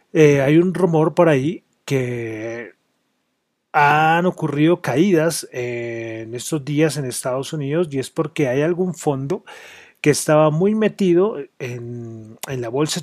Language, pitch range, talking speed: Spanish, 130-170 Hz, 145 wpm